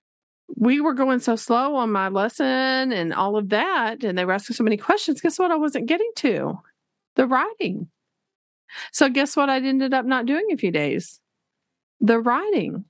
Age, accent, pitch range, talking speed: 40-59, American, 185-265 Hz, 185 wpm